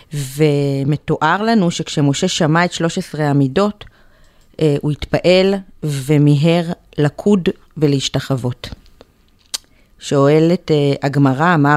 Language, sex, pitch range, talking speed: Hebrew, female, 150-185 Hz, 85 wpm